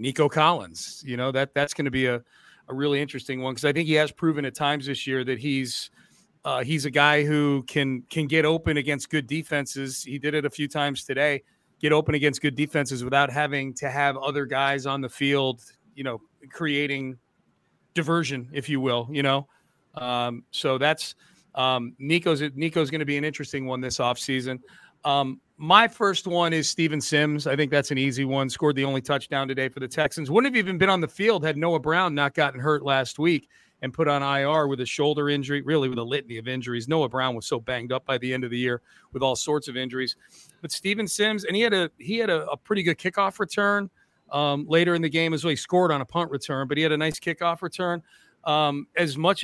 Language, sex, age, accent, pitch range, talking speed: English, male, 30-49, American, 135-165 Hz, 225 wpm